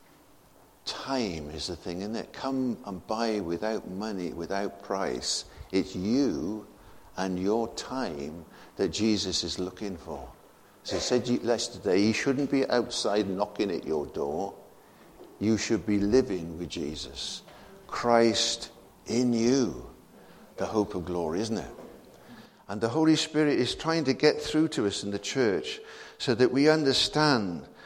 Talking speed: 145 wpm